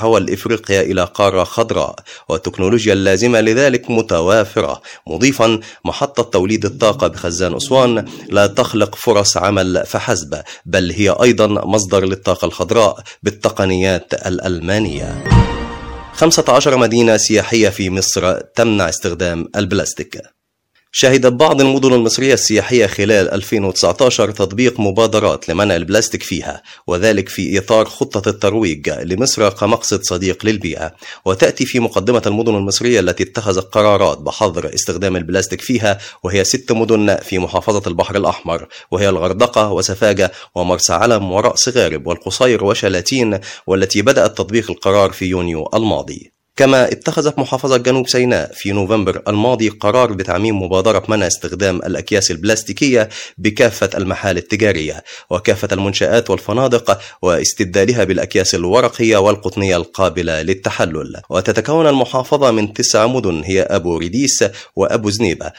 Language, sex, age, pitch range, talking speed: Arabic, male, 30-49, 95-115 Hz, 120 wpm